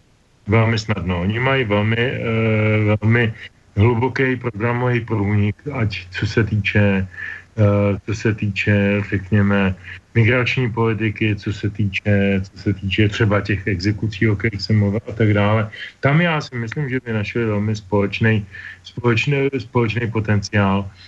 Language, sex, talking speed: Slovak, male, 140 wpm